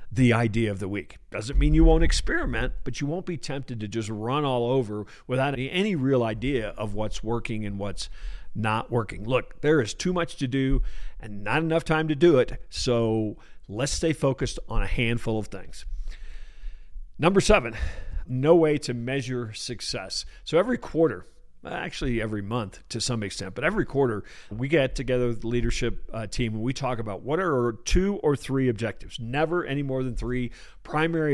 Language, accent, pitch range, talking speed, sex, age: English, American, 110-150 Hz, 190 wpm, male, 50-69